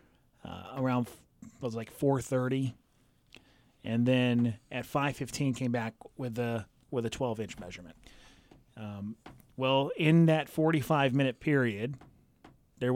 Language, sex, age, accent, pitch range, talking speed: English, male, 30-49, American, 120-145 Hz, 115 wpm